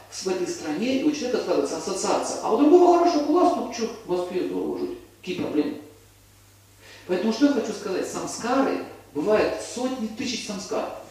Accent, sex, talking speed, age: native, male, 150 wpm, 50-69